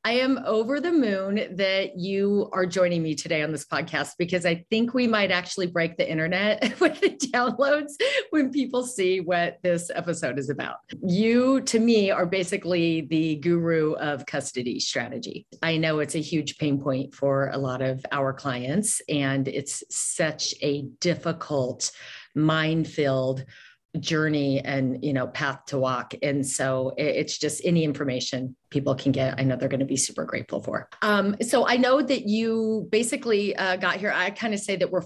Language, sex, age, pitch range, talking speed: English, female, 40-59, 145-200 Hz, 180 wpm